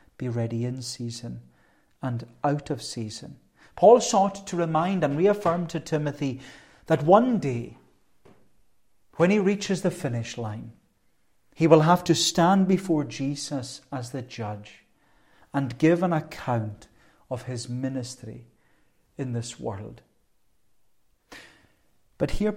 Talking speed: 125 wpm